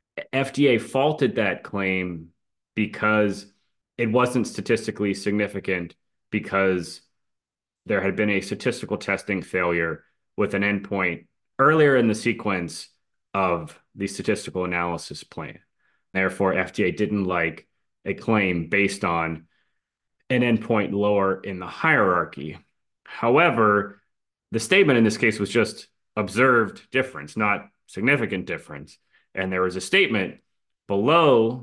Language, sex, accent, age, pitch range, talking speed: English, male, American, 30-49, 95-115 Hz, 120 wpm